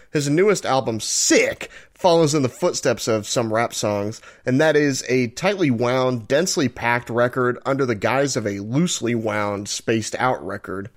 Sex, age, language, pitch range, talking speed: male, 30-49, English, 115-145 Hz, 170 wpm